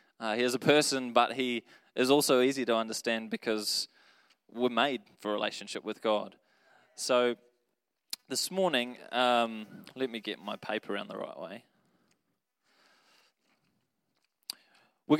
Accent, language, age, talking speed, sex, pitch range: Australian, English, 20-39, 135 wpm, male, 110-130 Hz